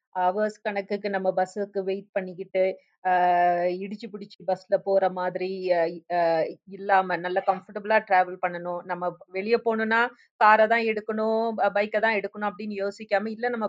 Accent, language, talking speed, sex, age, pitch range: native, Tamil, 125 wpm, female, 30-49, 190-235 Hz